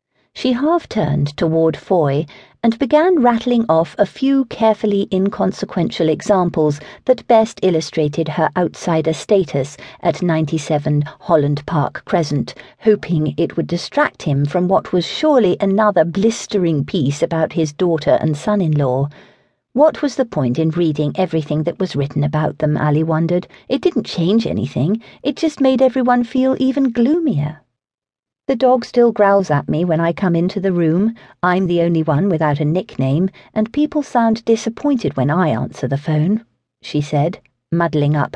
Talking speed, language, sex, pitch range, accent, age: 155 wpm, English, female, 150-215 Hz, British, 50-69